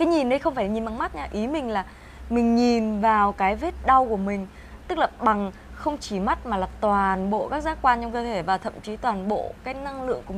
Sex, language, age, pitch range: female, Vietnamese, 20-39, 200-265 Hz